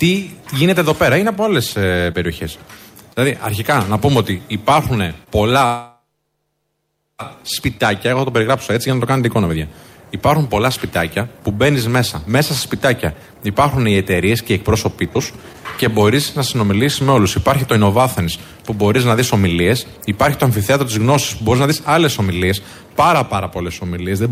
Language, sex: Greek, male